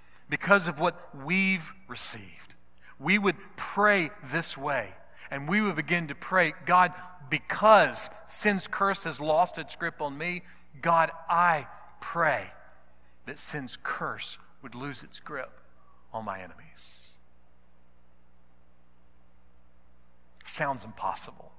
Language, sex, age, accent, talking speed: English, male, 50-69, American, 115 wpm